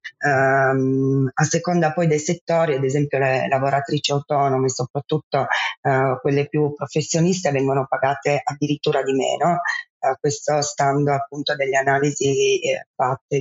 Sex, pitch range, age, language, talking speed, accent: female, 135-170 Hz, 30-49, Italian, 135 wpm, native